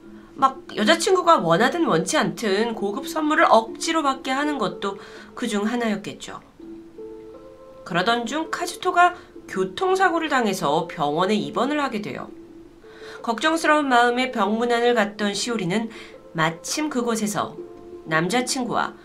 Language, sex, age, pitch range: Korean, female, 30-49, 190-295 Hz